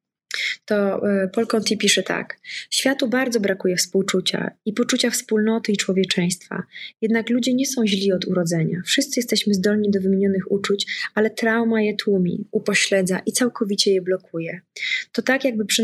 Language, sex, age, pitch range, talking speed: English, female, 20-39, 195-225 Hz, 150 wpm